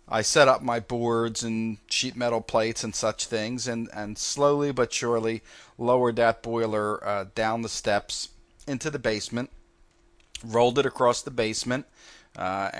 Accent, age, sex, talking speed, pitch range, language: American, 40-59, male, 155 wpm, 105-120 Hz, English